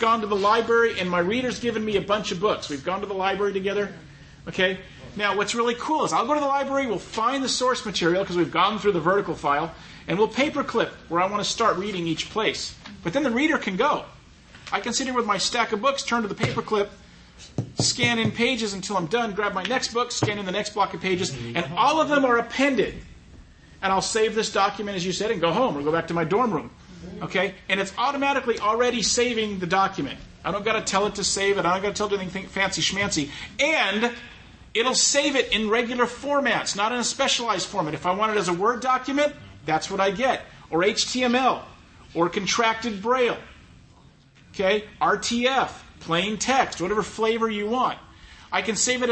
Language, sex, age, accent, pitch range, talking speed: English, male, 40-59, American, 185-240 Hz, 220 wpm